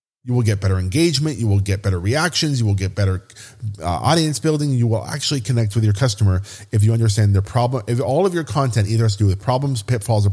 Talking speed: 245 wpm